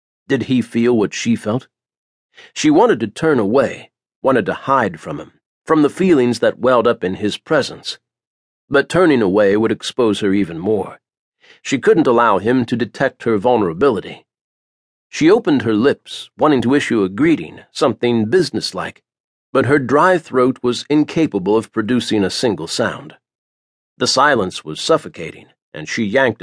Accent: American